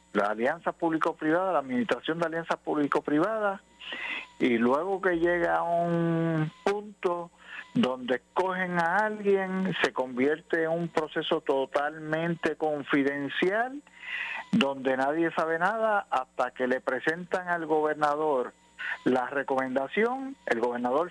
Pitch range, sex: 130-190 Hz, male